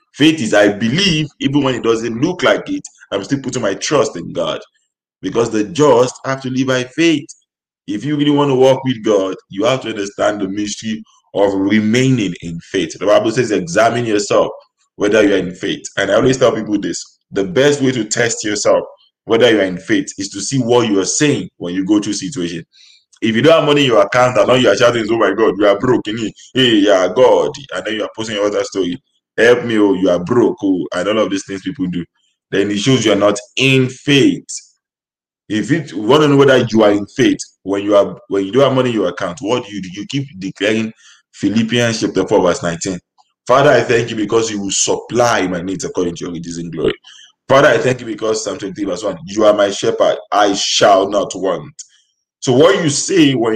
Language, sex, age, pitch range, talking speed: English, male, 20-39, 105-145 Hz, 225 wpm